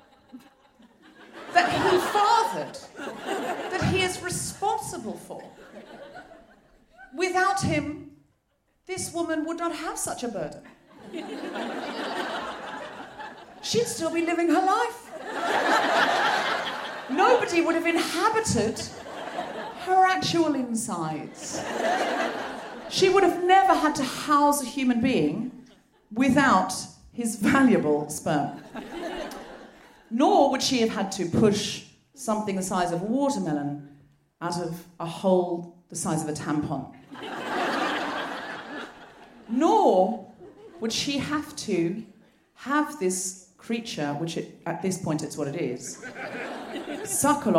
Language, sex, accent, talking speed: English, female, British, 105 wpm